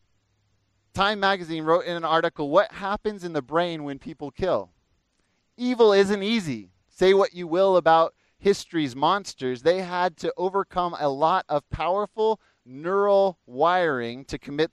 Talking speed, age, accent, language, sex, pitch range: 145 wpm, 30-49, American, English, male, 150-185 Hz